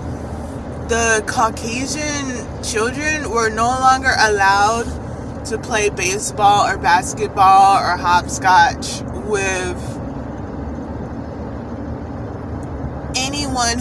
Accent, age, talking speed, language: American, 20-39, 70 wpm, English